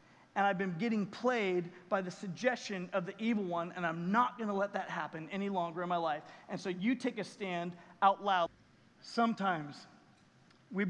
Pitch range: 215-285 Hz